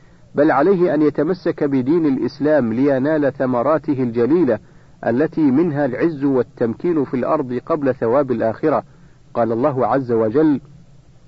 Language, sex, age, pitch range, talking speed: Arabic, male, 50-69, 125-150 Hz, 115 wpm